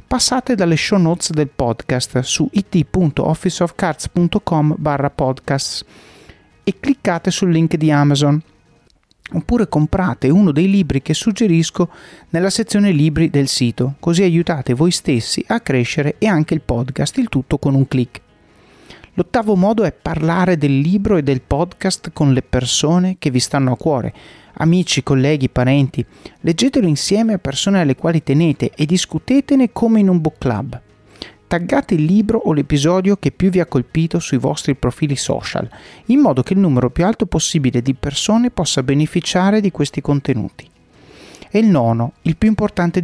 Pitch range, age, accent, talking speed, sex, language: 135-190 Hz, 30-49, native, 155 wpm, male, Italian